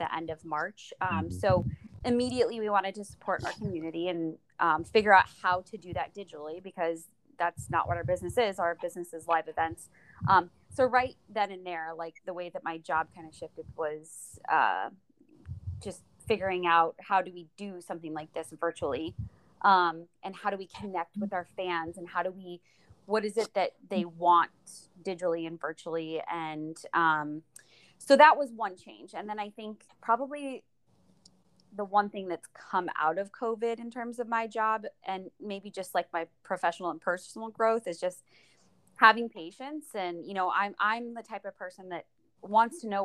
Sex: female